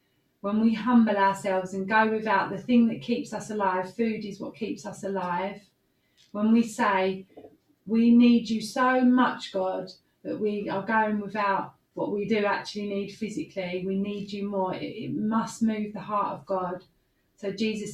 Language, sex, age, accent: English, female, 30-49, British